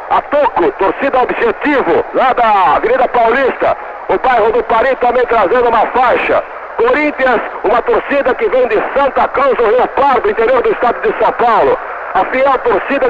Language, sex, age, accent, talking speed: Portuguese, male, 60-79, Brazilian, 170 wpm